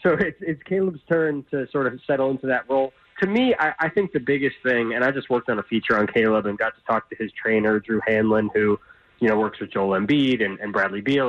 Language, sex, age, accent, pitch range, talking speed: English, male, 20-39, American, 115-170 Hz, 260 wpm